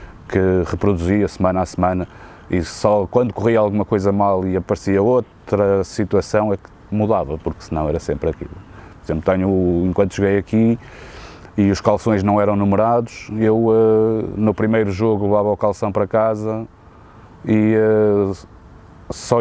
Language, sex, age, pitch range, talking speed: Portuguese, male, 20-39, 85-105 Hz, 145 wpm